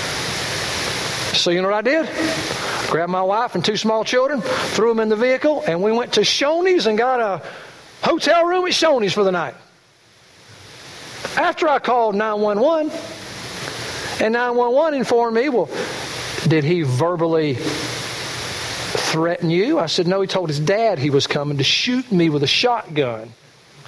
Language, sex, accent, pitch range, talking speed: English, male, American, 195-295 Hz, 160 wpm